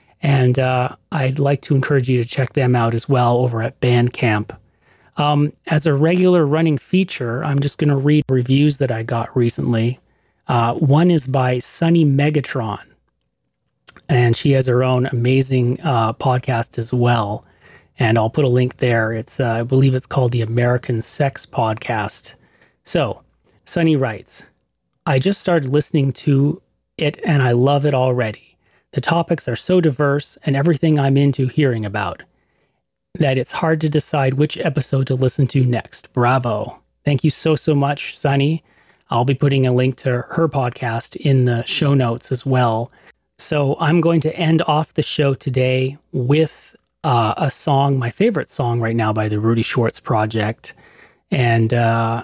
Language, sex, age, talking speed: English, male, 30-49, 170 wpm